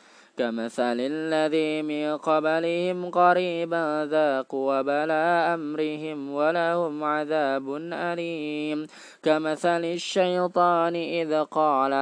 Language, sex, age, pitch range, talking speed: Indonesian, male, 20-39, 155-220 Hz, 75 wpm